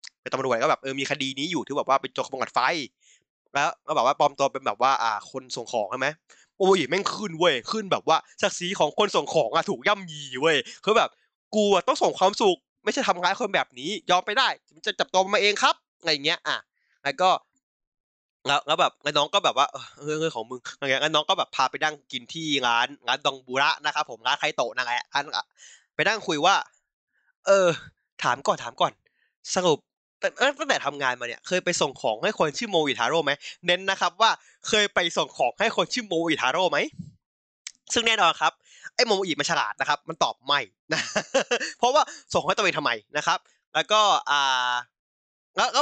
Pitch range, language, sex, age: 135-195 Hz, Thai, male, 20-39